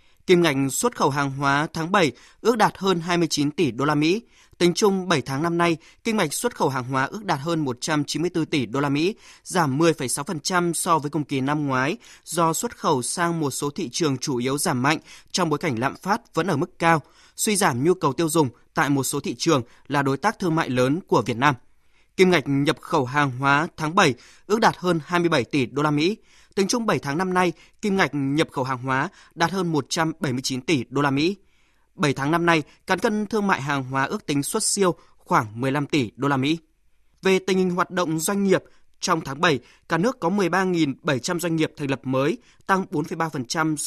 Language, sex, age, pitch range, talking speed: Vietnamese, male, 20-39, 140-180 Hz, 220 wpm